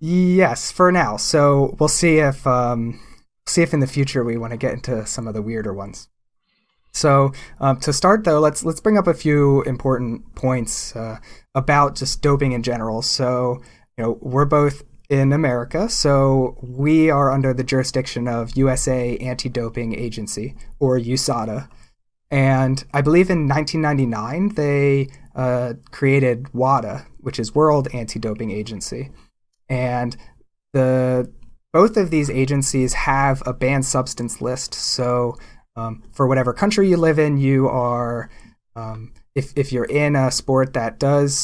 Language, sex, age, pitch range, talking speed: English, male, 30-49, 120-145 Hz, 155 wpm